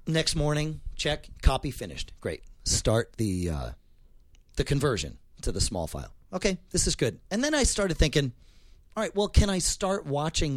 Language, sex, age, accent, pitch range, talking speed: English, male, 40-59, American, 95-145 Hz, 175 wpm